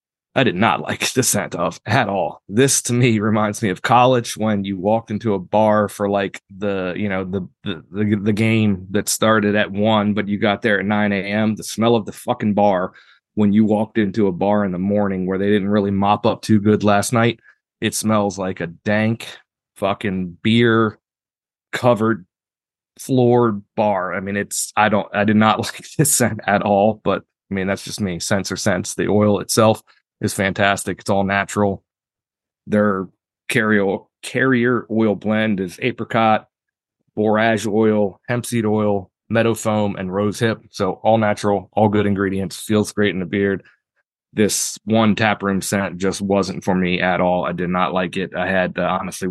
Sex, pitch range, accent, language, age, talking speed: male, 100-110 Hz, American, English, 30-49, 185 wpm